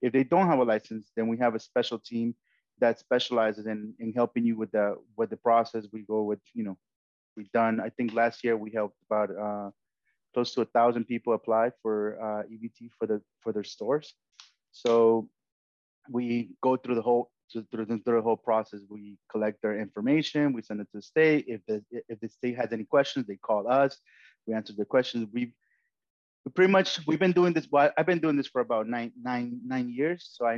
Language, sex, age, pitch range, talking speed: English, male, 30-49, 110-125 Hz, 215 wpm